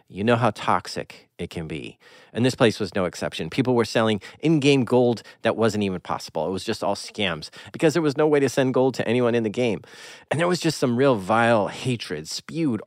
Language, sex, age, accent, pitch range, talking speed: English, male, 40-59, American, 115-155 Hz, 230 wpm